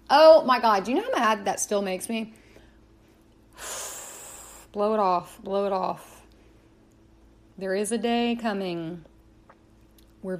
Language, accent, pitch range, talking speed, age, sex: English, American, 190-260 Hz, 140 wpm, 30-49, female